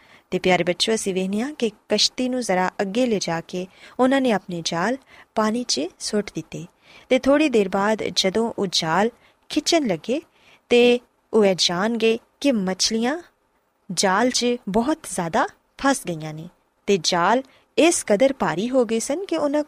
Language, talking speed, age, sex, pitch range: Punjabi, 160 wpm, 20-39, female, 190-255 Hz